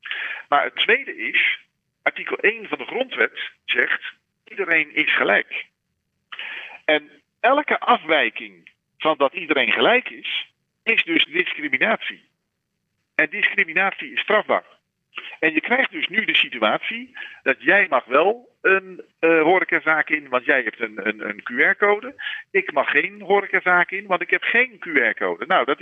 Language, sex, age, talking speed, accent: Dutch, male, 50-69, 145 wpm, Dutch